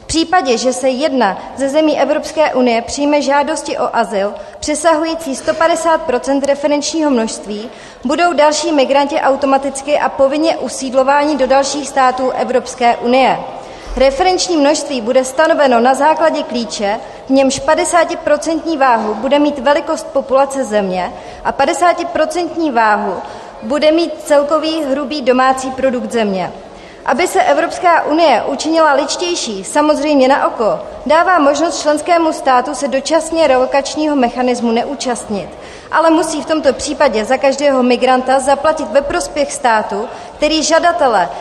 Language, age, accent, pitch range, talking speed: Czech, 30-49, native, 255-310 Hz, 125 wpm